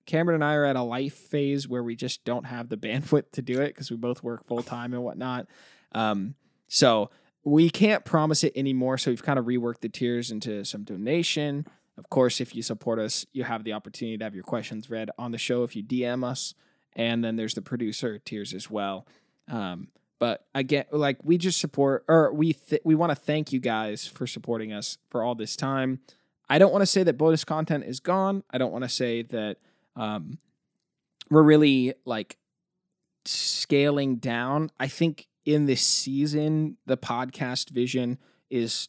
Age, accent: 20-39, American